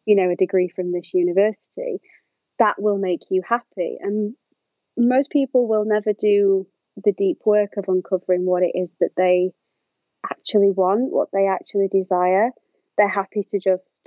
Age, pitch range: 30-49, 185-235 Hz